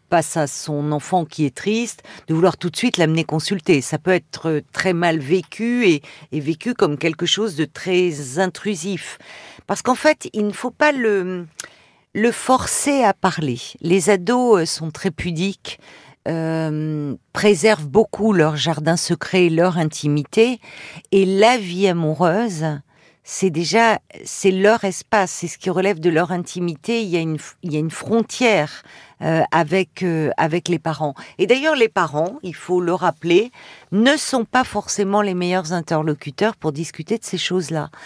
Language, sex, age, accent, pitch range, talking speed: French, female, 50-69, French, 160-215 Hz, 165 wpm